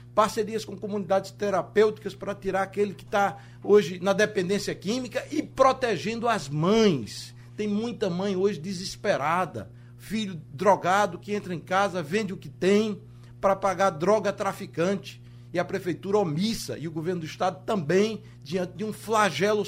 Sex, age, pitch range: male, 60-79, 160-215 Hz